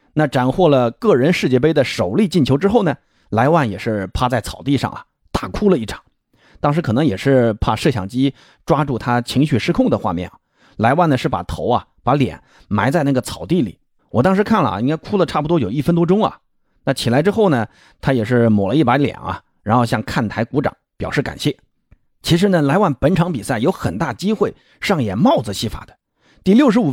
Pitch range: 120-175 Hz